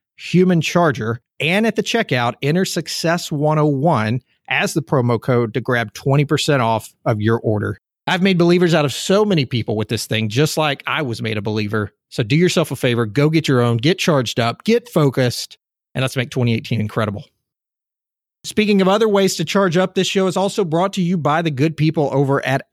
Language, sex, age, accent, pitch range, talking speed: English, male, 40-59, American, 125-175 Hz, 205 wpm